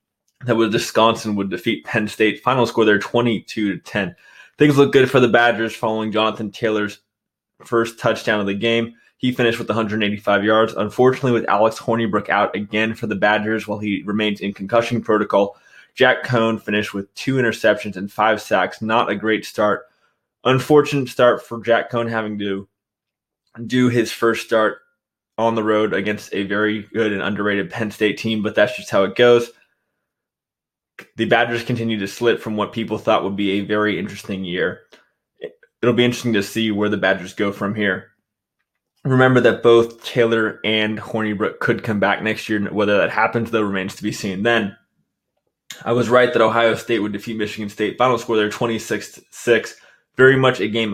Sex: male